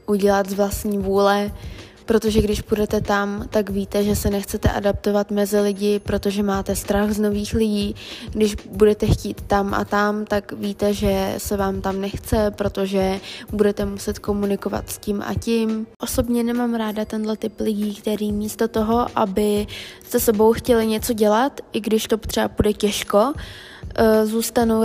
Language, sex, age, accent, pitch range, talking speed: Czech, female, 20-39, native, 205-225 Hz, 155 wpm